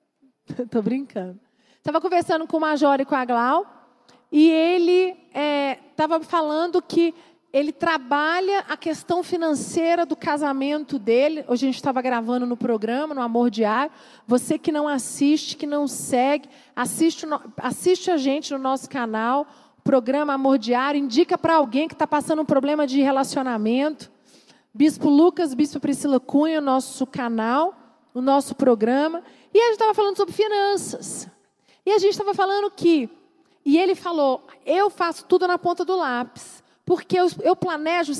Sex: female